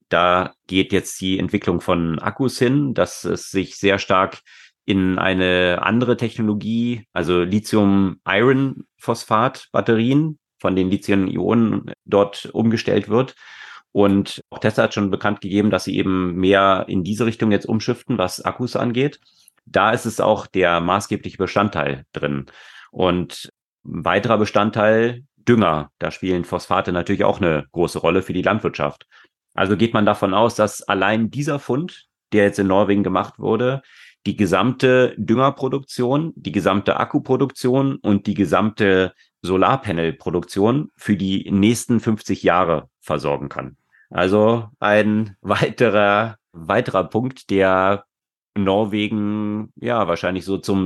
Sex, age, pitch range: male, 30-49, 95-115 Hz